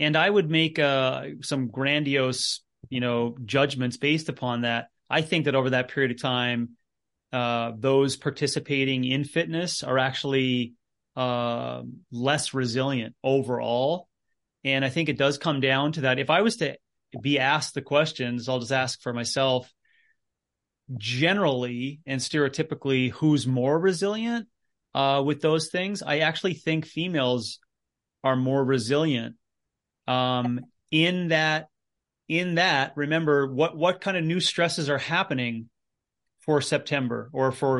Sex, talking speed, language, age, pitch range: male, 140 wpm, English, 30-49, 125-155 Hz